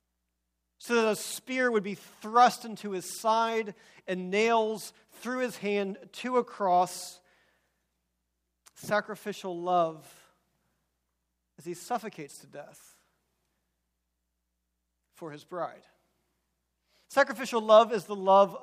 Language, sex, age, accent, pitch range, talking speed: English, male, 40-59, American, 180-230 Hz, 105 wpm